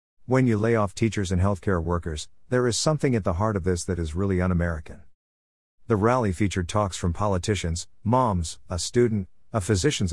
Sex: male